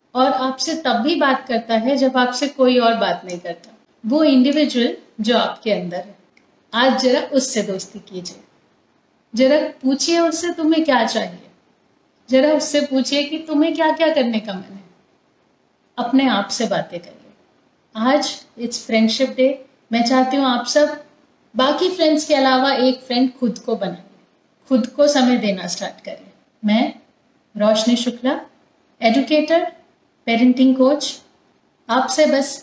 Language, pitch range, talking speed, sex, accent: Hindi, 225-285 Hz, 115 wpm, female, native